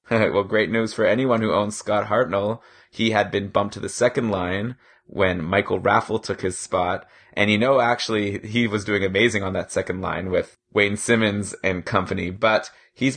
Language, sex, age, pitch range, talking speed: English, male, 20-39, 100-120 Hz, 190 wpm